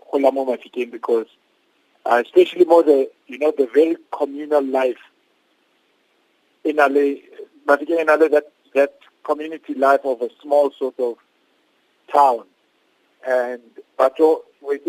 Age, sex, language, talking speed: 50-69, male, English, 115 wpm